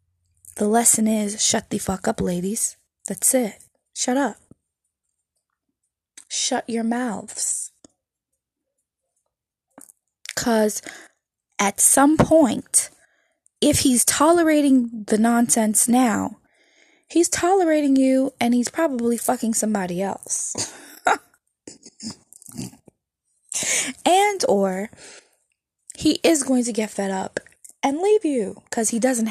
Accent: American